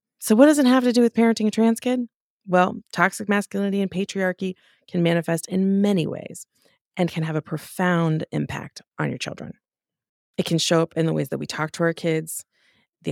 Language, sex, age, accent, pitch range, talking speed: English, female, 20-39, American, 150-180 Hz, 205 wpm